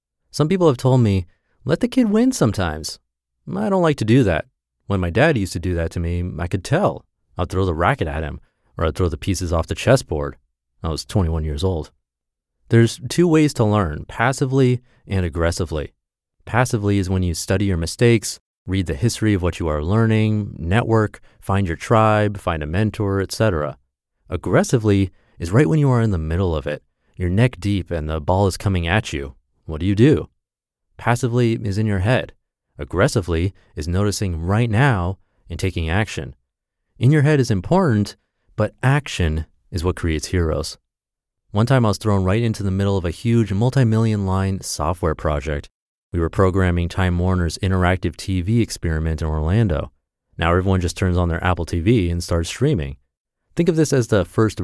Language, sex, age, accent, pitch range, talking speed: English, male, 30-49, American, 85-110 Hz, 185 wpm